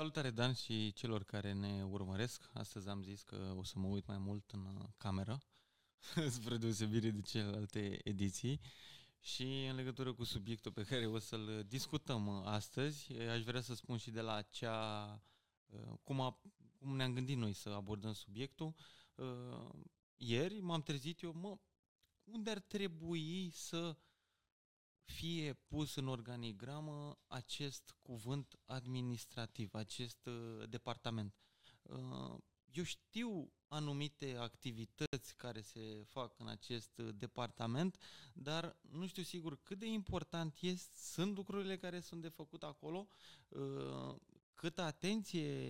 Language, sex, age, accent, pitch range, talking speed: Romanian, male, 20-39, native, 110-150 Hz, 125 wpm